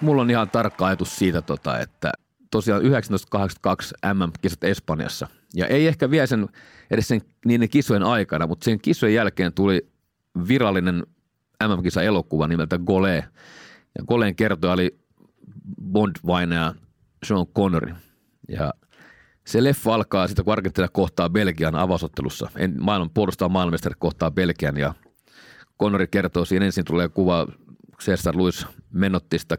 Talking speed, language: 130 wpm, Finnish